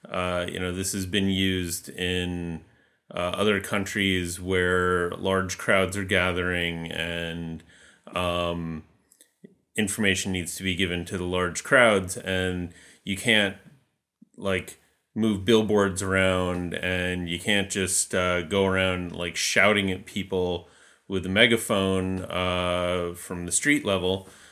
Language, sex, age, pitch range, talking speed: English, male, 30-49, 90-100 Hz, 130 wpm